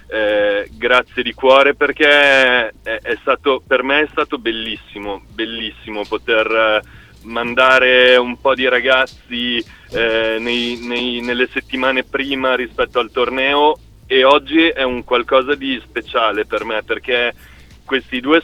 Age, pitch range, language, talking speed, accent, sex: 30-49, 120-145 Hz, Italian, 135 wpm, native, male